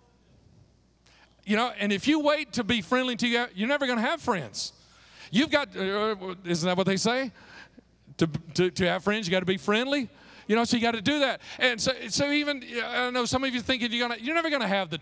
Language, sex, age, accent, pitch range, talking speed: English, male, 40-59, American, 205-260 Hz, 255 wpm